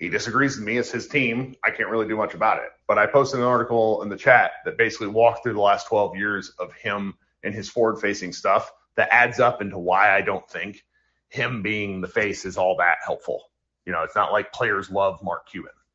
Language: English